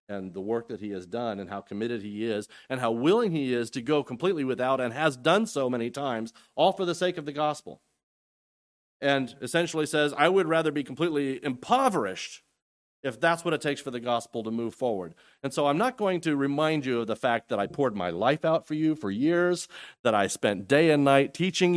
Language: English